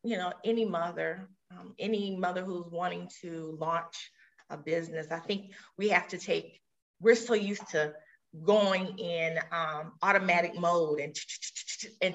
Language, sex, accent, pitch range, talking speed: English, female, American, 170-210 Hz, 150 wpm